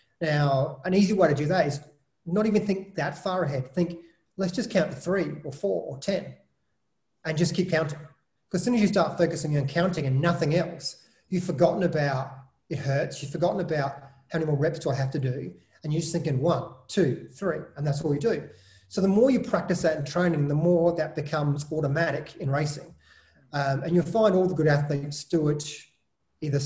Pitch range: 140-175 Hz